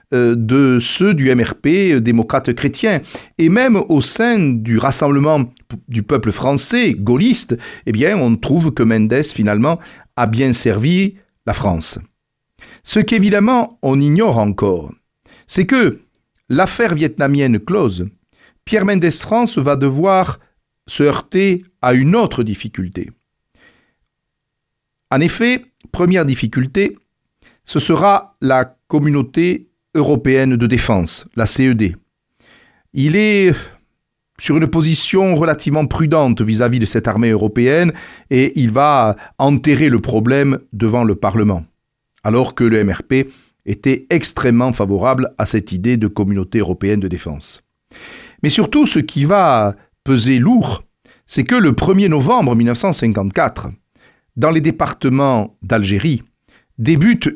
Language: French